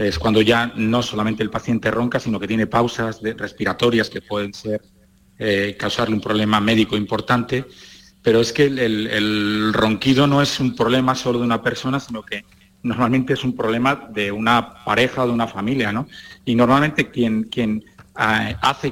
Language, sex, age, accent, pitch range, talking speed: Spanish, male, 40-59, Spanish, 105-130 Hz, 175 wpm